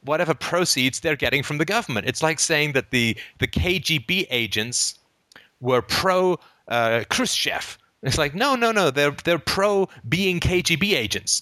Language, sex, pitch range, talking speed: English, male, 105-145 Hz, 145 wpm